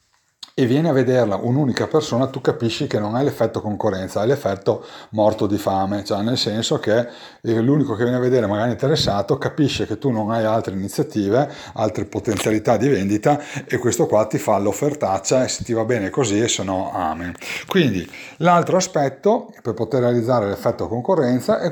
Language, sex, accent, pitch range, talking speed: Italian, male, native, 105-135 Hz, 180 wpm